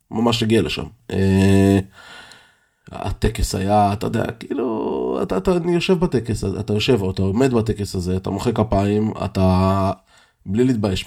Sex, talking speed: male, 140 wpm